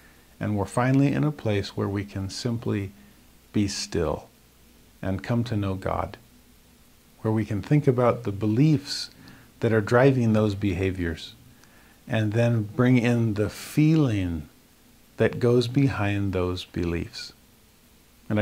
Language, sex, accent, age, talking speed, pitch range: English, male, American, 50-69, 135 wpm, 105-135 Hz